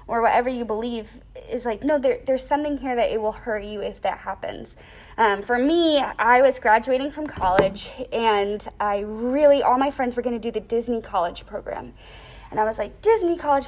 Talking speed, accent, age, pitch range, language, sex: 200 wpm, American, 20-39, 225-325 Hz, English, female